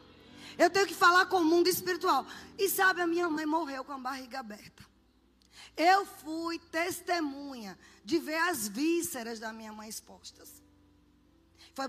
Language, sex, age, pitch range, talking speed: Portuguese, female, 20-39, 280-365 Hz, 150 wpm